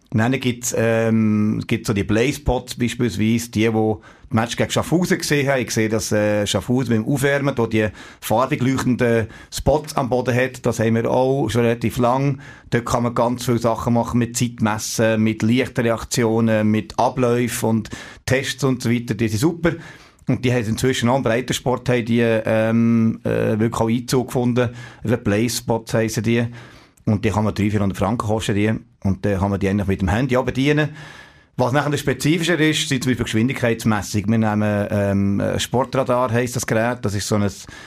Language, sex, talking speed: German, male, 185 wpm